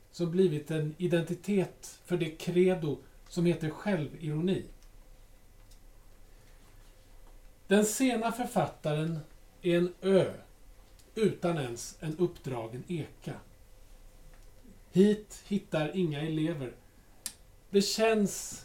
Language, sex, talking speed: Swedish, male, 85 wpm